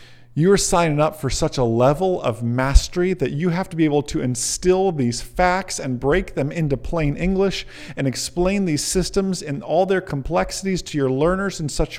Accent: American